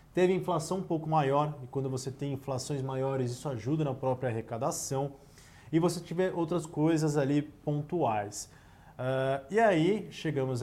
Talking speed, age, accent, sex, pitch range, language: 145 wpm, 20-39, Brazilian, male, 130-170 Hz, Portuguese